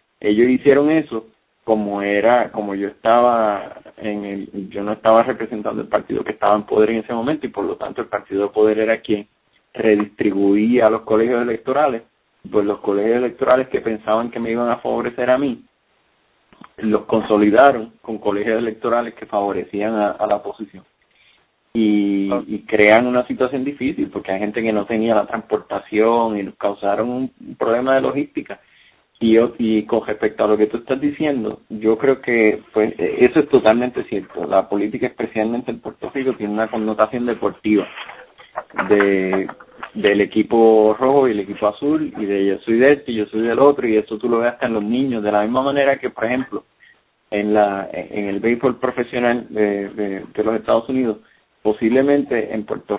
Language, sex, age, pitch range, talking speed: Spanish, male, 30-49, 105-120 Hz, 180 wpm